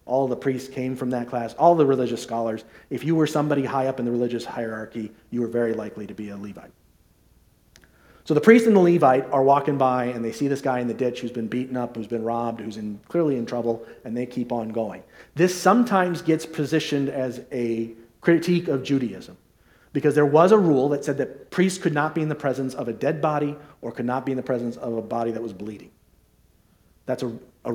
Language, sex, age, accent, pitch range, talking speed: English, male, 40-59, American, 115-145 Hz, 230 wpm